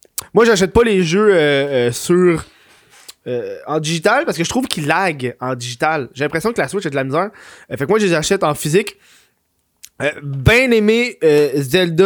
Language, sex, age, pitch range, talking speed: French, male, 20-39, 155-215 Hz, 210 wpm